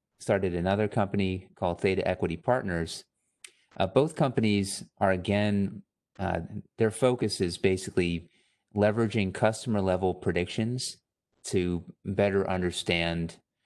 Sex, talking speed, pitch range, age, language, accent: male, 105 wpm, 85-105 Hz, 30-49, English, American